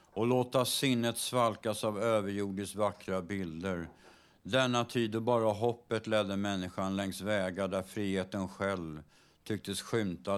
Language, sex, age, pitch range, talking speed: Swedish, male, 60-79, 95-115 Hz, 120 wpm